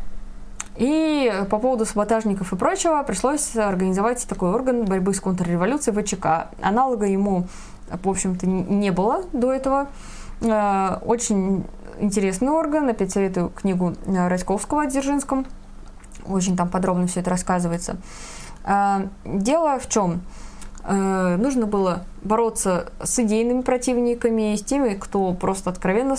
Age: 20-39